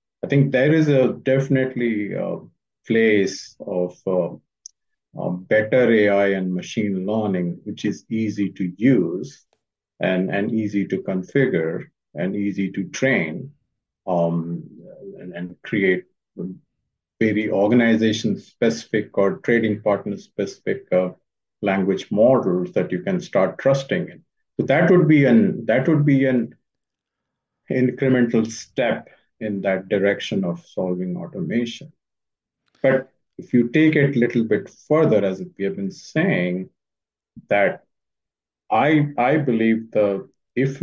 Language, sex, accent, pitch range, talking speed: English, male, Indian, 95-130 Hz, 130 wpm